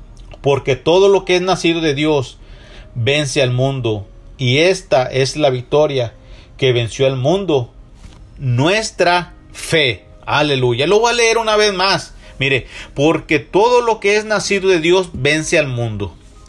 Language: Spanish